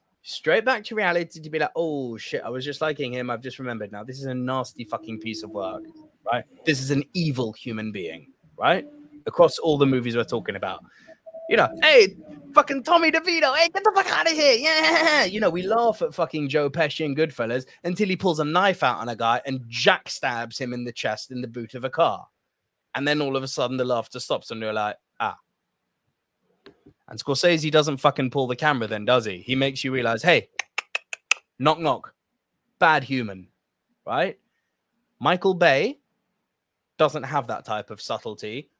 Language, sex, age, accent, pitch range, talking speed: English, male, 20-39, British, 130-210 Hz, 200 wpm